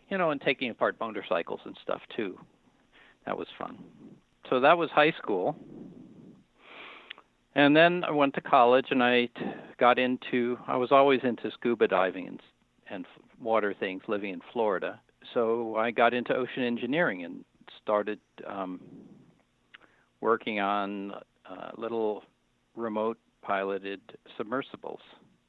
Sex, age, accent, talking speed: male, 50-69, American, 130 wpm